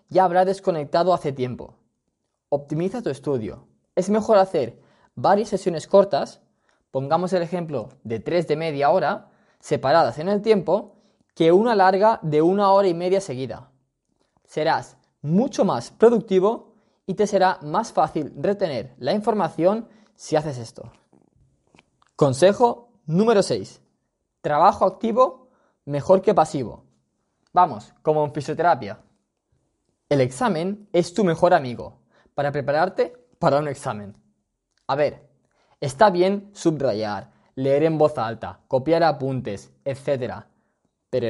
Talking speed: 125 wpm